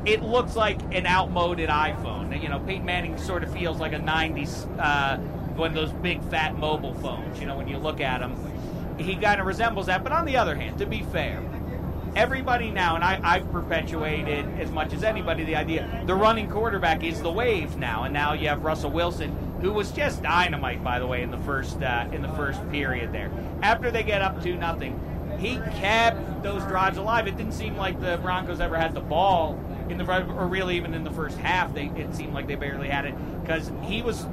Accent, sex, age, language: American, male, 40-59, English